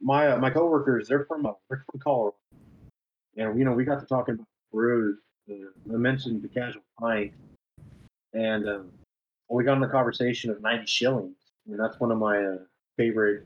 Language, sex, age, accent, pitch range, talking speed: English, male, 30-49, American, 105-125 Hz, 195 wpm